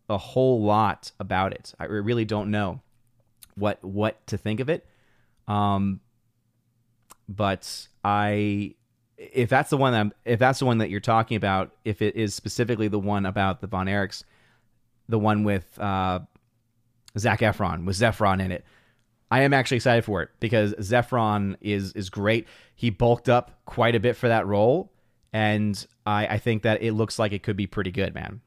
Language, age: English, 30-49